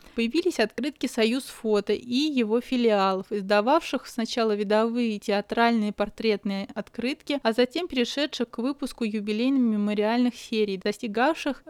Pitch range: 210-250 Hz